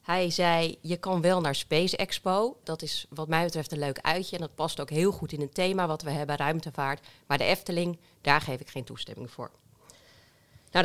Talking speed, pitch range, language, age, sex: 215 wpm, 145-185 Hz, Dutch, 40-59, female